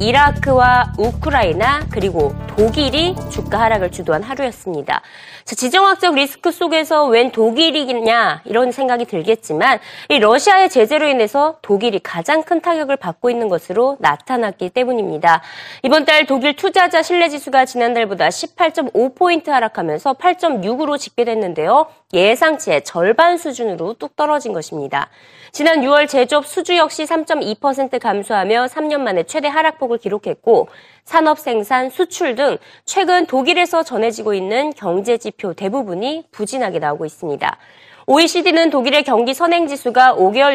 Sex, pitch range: female, 225-320 Hz